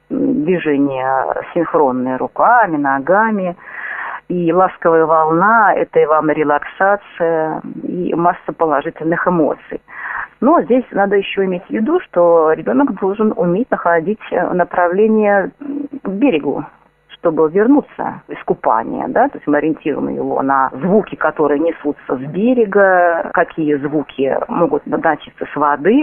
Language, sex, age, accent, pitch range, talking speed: Russian, female, 40-59, native, 160-215 Hz, 120 wpm